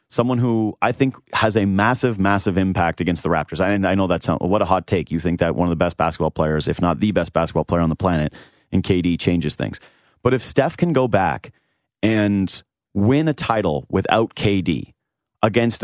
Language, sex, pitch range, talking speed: English, male, 95-130 Hz, 210 wpm